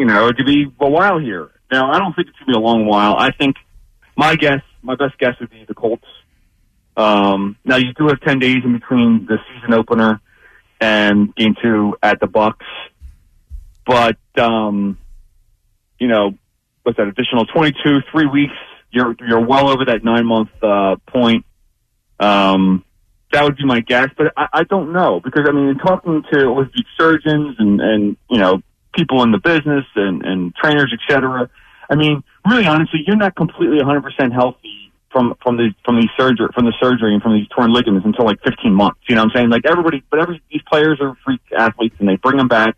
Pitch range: 110-140 Hz